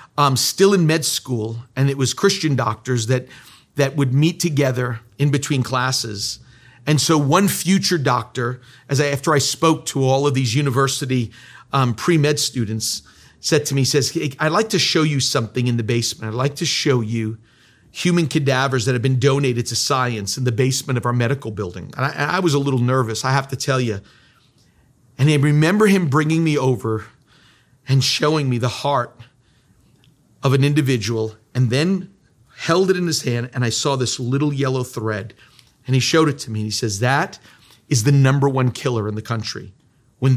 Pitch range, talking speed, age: 120-145 Hz, 195 wpm, 40-59